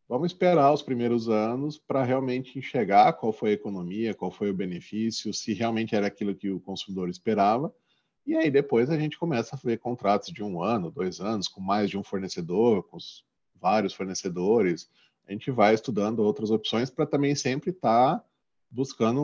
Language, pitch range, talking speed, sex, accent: Portuguese, 105-140 Hz, 180 wpm, male, Brazilian